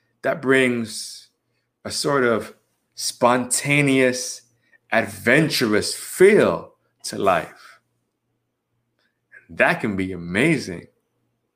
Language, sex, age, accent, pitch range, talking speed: English, male, 30-49, American, 115-135 Hz, 80 wpm